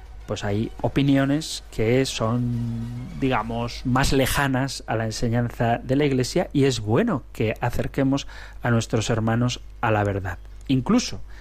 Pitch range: 110-140 Hz